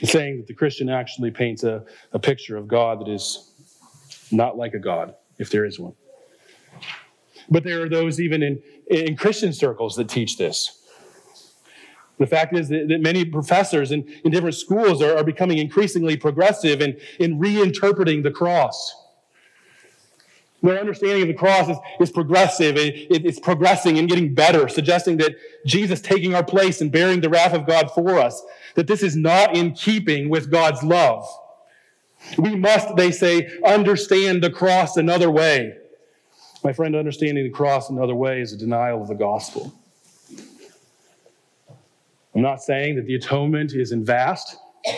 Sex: male